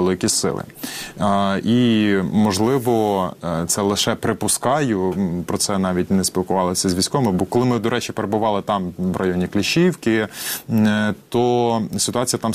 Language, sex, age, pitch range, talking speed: Ukrainian, male, 20-39, 95-110 Hz, 135 wpm